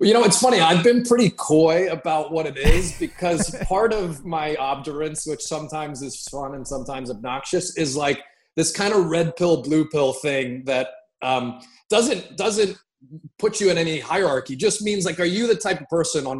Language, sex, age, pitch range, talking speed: English, male, 20-39, 140-190 Hz, 195 wpm